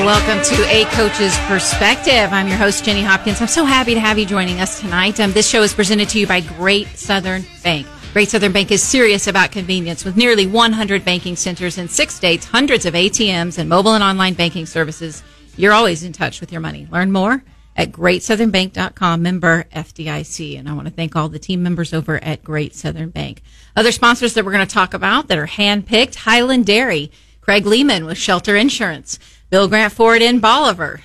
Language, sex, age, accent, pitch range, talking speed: English, female, 40-59, American, 175-220 Hz, 200 wpm